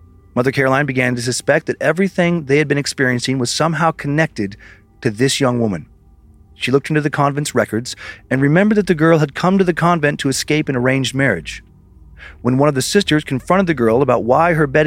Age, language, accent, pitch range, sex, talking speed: 40-59, English, American, 110-155 Hz, male, 205 wpm